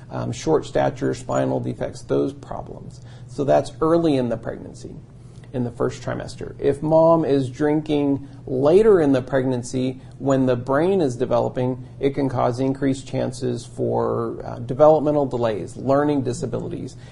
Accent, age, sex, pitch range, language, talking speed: American, 40-59, male, 125-145 Hz, English, 145 wpm